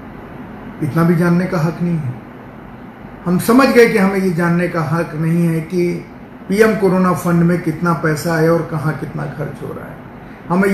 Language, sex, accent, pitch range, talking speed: Hindi, male, native, 160-210 Hz, 200 wpm